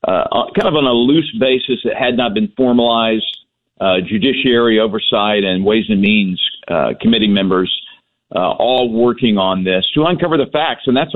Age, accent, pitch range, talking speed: 50-69, American, 110-145 Hz, 175 wpm